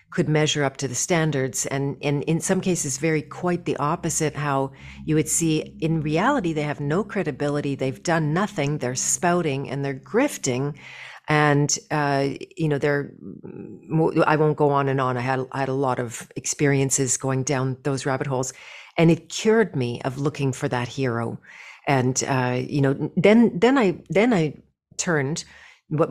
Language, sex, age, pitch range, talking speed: English, female, 40-59, 140-180 Hz, 175 wpm